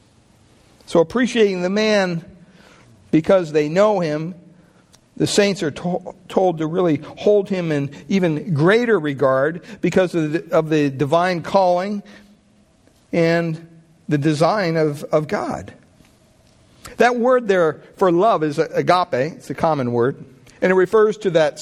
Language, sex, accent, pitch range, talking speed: English, male, American, 140-180 Hz, 135 wpm